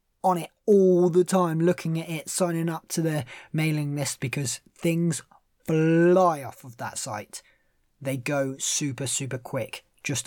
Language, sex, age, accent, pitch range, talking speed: English, male, 20-39, British, 135-180 Hz, 160 wpm